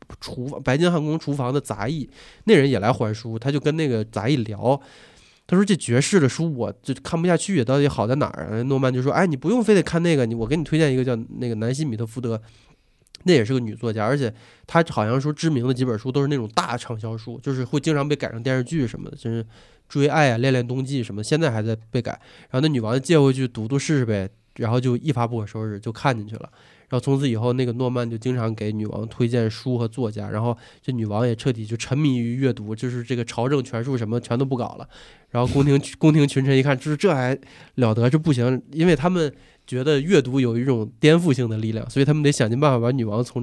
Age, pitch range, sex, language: 20-39, 115-150 Hz, male, Chinese